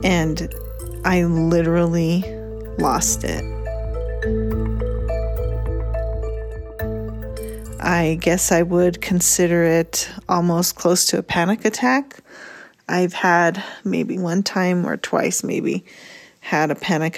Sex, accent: female, American